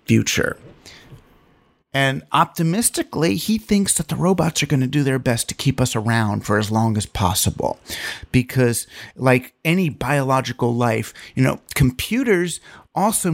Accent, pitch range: American, 125-180 Hz